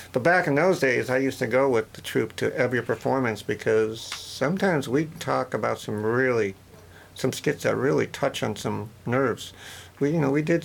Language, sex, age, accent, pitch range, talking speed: English, male, 50-69, American, 105-130 Hz, 195 wpm